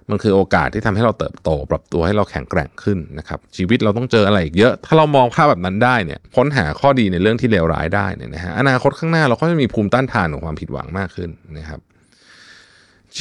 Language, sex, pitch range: Thai, male, 85-120 Hz